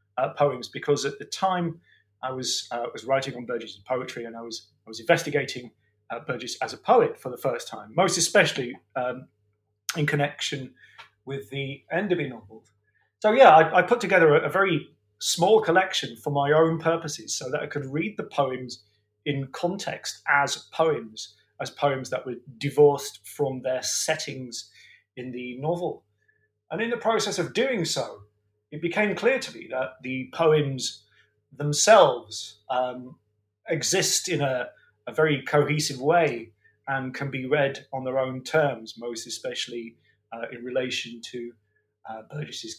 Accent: British